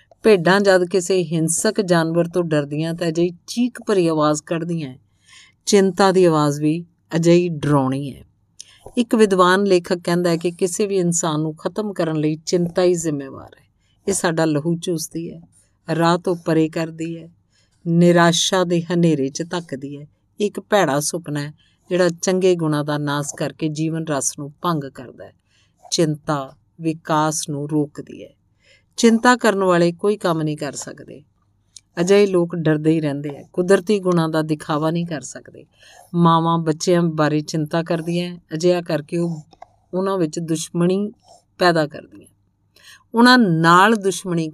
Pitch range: 150-180 Hz